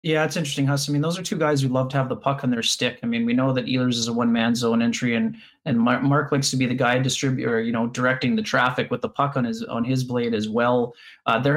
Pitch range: 130-170 Hz